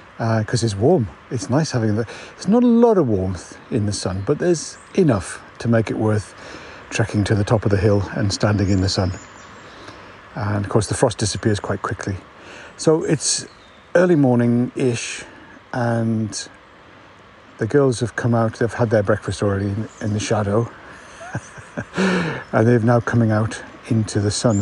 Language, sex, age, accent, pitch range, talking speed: English, male, 60-79, British, 105-125 Hz, 175 wpm